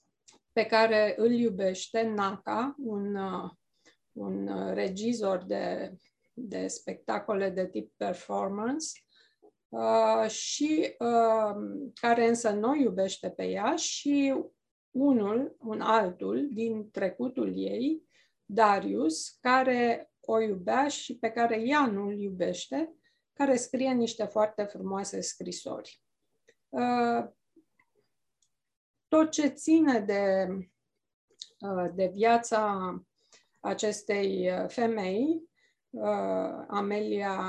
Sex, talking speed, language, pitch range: female, 85 wpm, English, 205-255 Hz